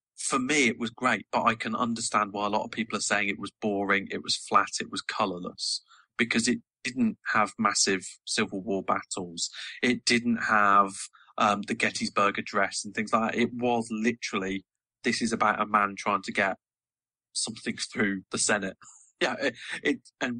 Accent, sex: British, male